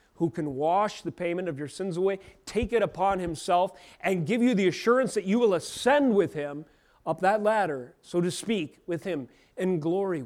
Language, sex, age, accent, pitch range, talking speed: English, male, 30-49, American, 170-215 Hz, 200 wpm